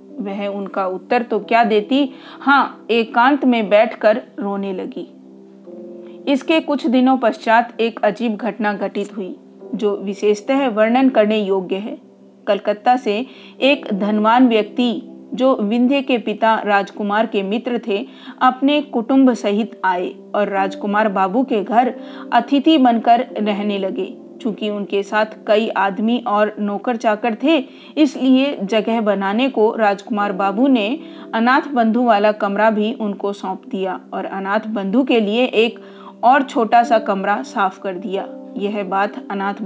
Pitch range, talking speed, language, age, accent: 200-250 Hz, 140 wpm, Hindi, 40-59, native